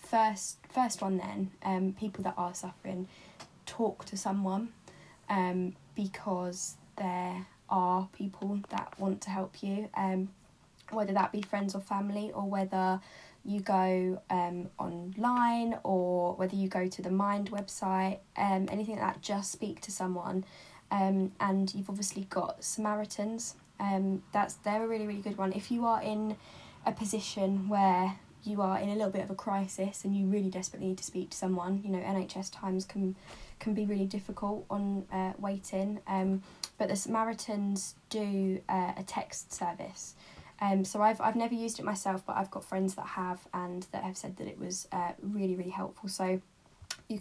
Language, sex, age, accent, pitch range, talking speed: English, female, 10-29, British, 185-210 Hz, 175 wpm